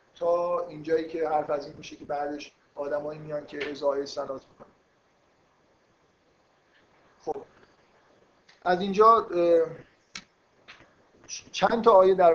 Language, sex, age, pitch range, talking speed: Persian, male, 50-69, 145-170 Hz, 110 wpm